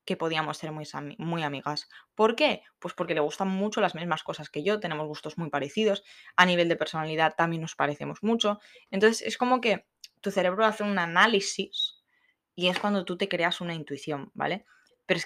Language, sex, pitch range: Spanish, female, 150-195 Hz